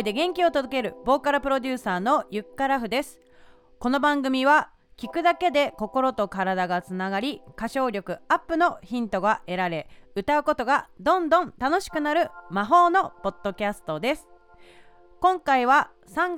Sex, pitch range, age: female, 205-310 Hz, 30-49